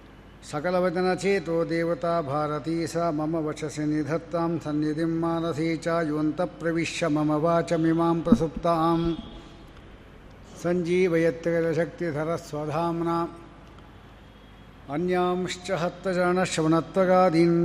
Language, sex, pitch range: Kannada, male, 155-170 Hz